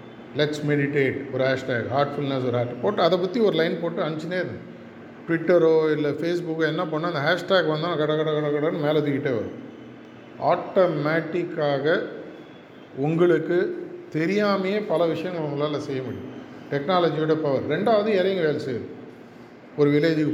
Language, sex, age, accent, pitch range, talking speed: Tamil, male, 50-69, native, 140-165 Hz, 140 wpm